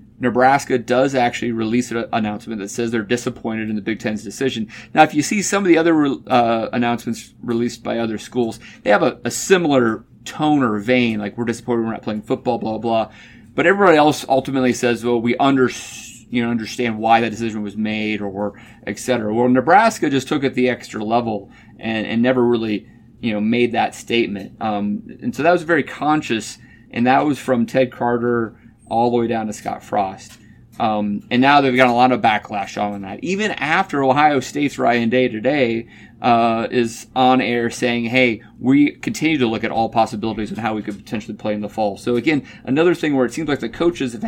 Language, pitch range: English, 110-130 Hz